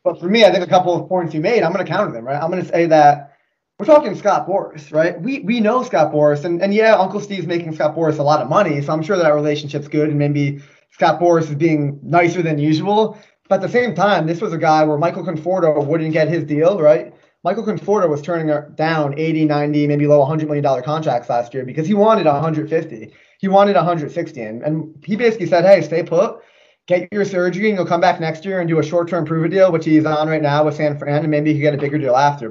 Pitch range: 150-195 Hz